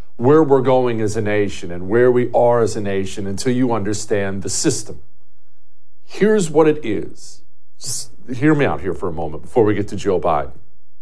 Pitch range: 105-145 Hz